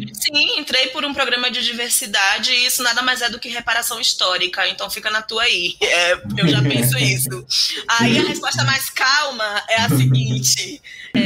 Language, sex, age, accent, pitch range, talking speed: Portuguese, female, 20-39, Brazilian, 215-265 Hz, 175 wpm